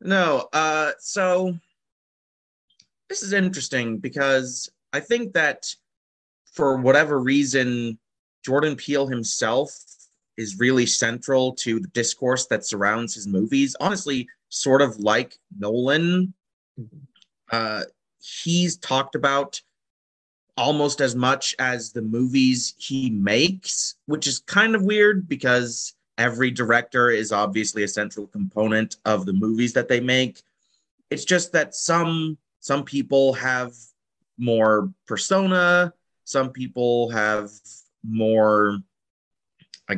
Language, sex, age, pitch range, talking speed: English, male, 30-49, 120-155 Hz, 115 wpm